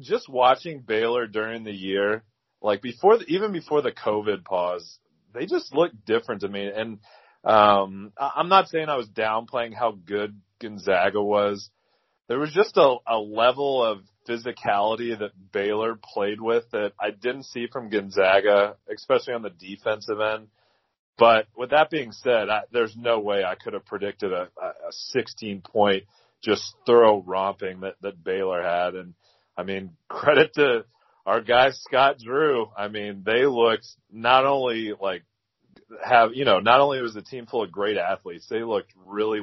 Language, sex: English, male